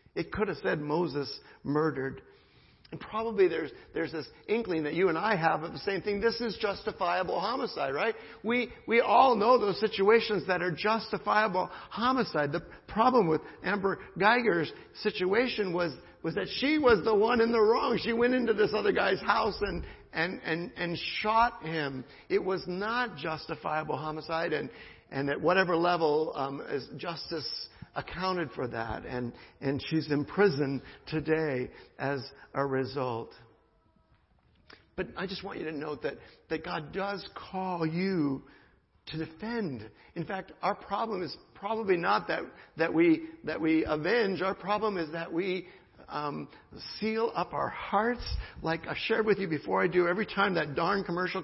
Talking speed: 165 wpm